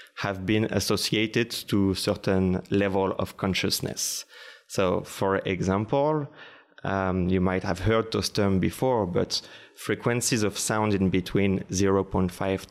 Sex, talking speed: male, 125 wpm